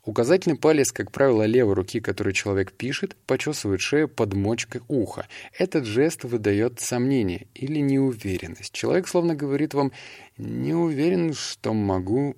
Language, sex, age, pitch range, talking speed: Russian, male, 20-39, 100-130 Hz, 135 wpm